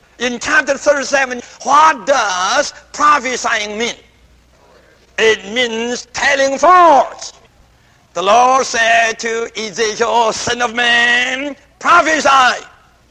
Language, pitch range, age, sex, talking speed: English, 210-285 Hz, 60-79, male, 90 wpm